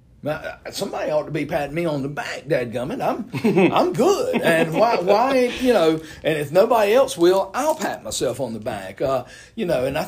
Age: 50-69